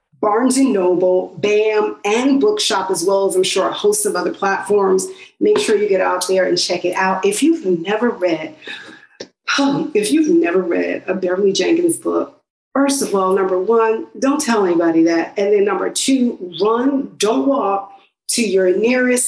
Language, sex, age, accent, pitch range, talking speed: English, female, 40-59, American, 195-320 Hz, 175 wpm